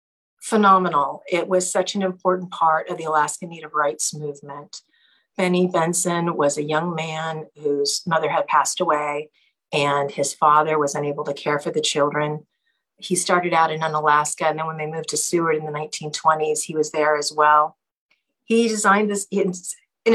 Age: 50-69